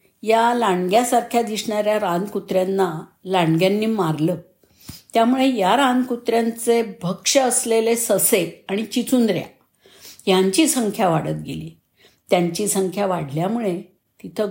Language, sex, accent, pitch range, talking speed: Marathi, female, native, 175-230 Hz, 90 wpm